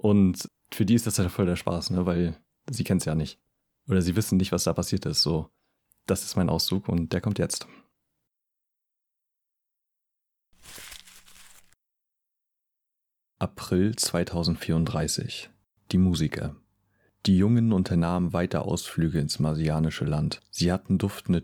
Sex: male